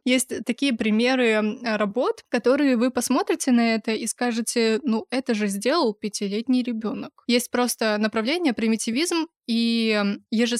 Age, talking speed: 20-39, 130 wpm